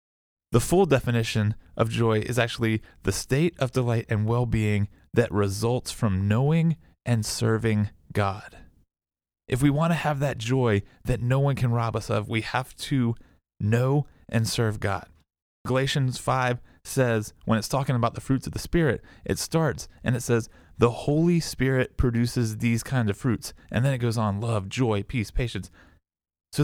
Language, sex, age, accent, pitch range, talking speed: English, male, 30-49, American, 100-135 Hz, 170 wpm